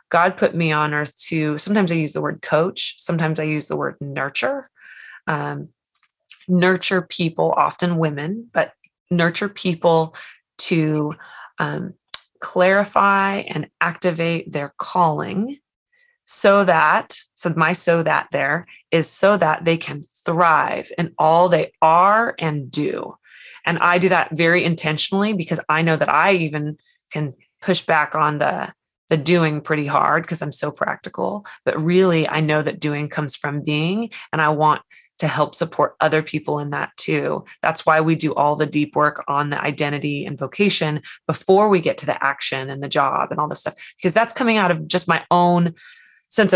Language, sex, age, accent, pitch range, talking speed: English, female, 20-39, American, 150-180 Hz, 170 wpm